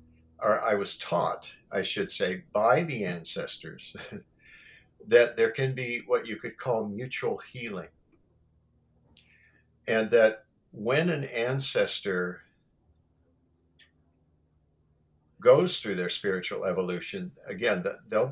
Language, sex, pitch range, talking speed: English, male, 85-120 Hz, 110 wpm